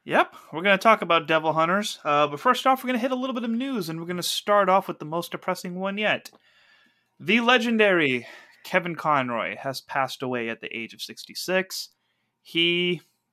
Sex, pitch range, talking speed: male, 120-165 Hz, 205 wpm